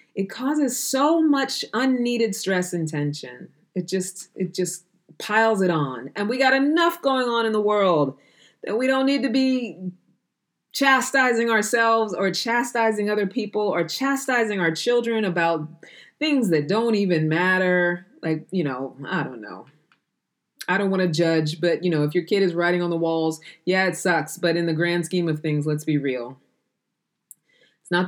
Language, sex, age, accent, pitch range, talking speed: English, female, 20-39, American, 160-210 Hz, 175 wpm